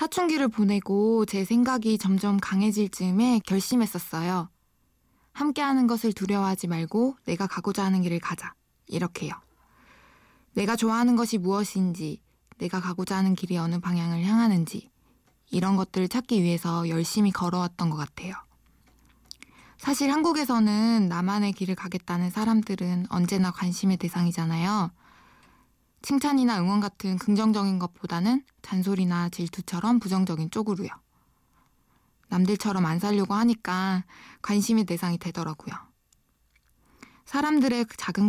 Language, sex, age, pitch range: Korean, female, 20-39, 180-225 Hz